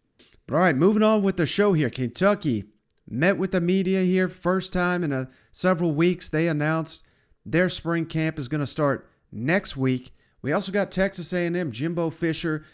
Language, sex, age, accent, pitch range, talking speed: English, male, 40-59, American, 140-160 Hz, 175 wpm